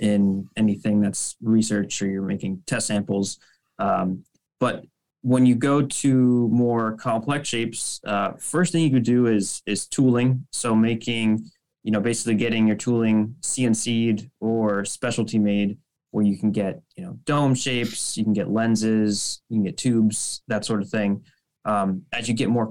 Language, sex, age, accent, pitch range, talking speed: English, male, 20-39, American, 100-120 Hz, 170 wpm